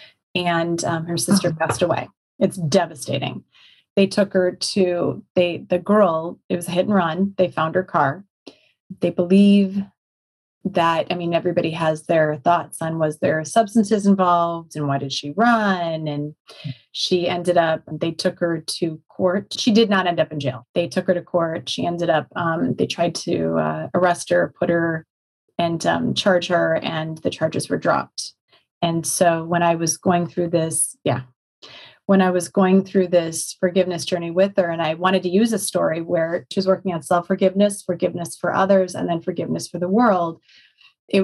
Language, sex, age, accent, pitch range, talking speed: English, female, 30-49, American, 165-190 Hz, 185 wpm